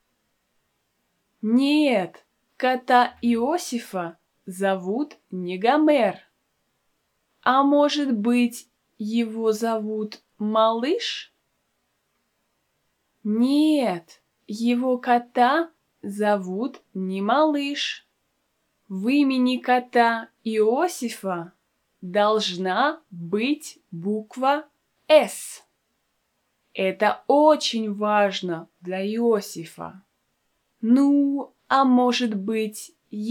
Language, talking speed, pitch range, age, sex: Russian, 60 wpm, 200-265 Hz, 20-39, female